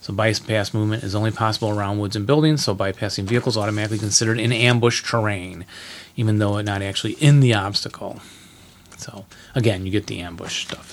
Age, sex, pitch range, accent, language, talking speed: 30-49, male, 95-115 Hz, American, English, 180 wpm